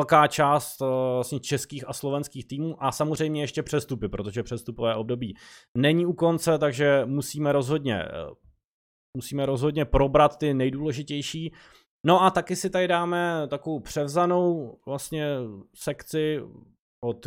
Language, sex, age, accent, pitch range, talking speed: Czech, male, 20-39, native, 120-155 Hz, 120 wpm